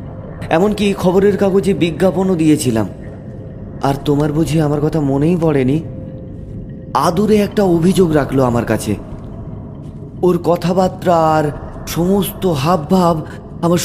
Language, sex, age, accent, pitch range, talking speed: Bengali, male, 30-49, native, 130-195 Hz, 105 wpm